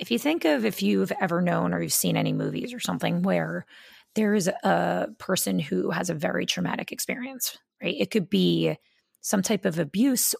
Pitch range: 180-235 Hz